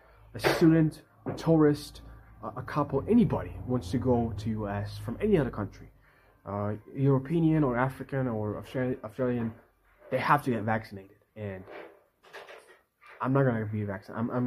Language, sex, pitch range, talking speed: English, male, 110-130 Hz, 145 wpm